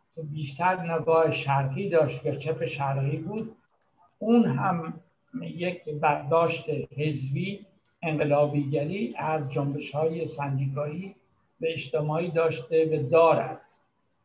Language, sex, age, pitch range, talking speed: Persian, male, 60-79, 145-170 Hz, 95 wpm